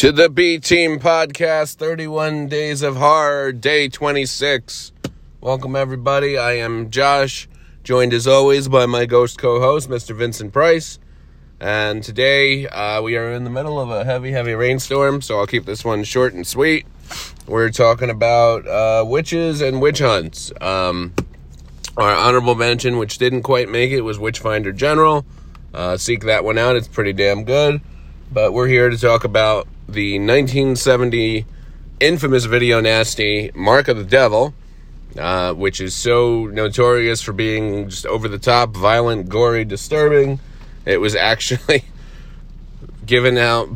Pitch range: 100-130 Hz